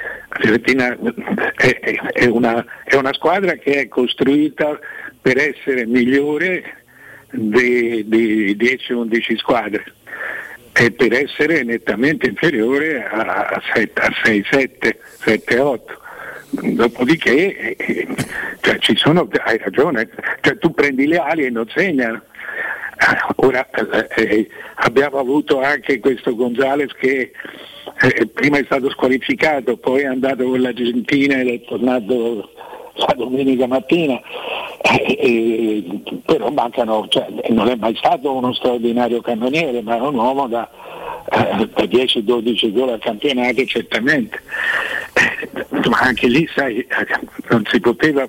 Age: 60-79